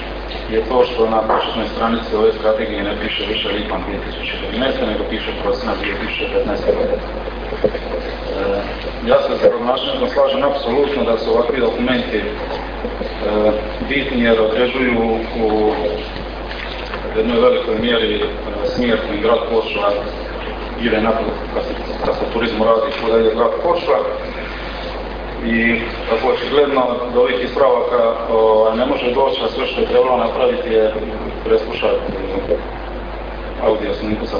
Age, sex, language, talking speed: 40-59, male, Croatian, 125 wpm